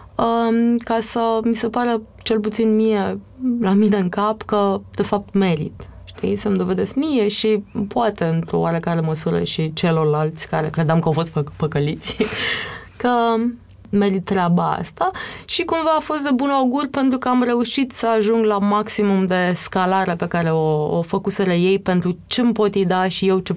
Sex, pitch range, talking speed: female, 185-240 Hz, 170 wpm